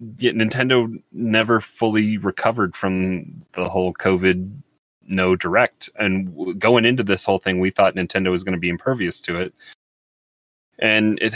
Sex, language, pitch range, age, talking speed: male, English, 85-105 Hz, 30-49, 150 wpm